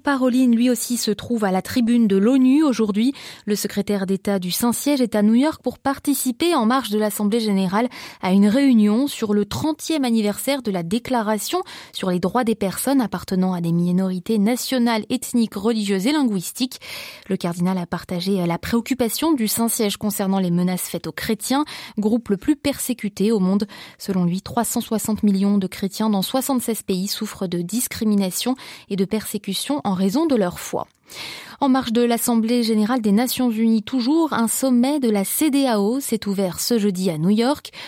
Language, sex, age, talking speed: French, female, 20-39, 180 wpm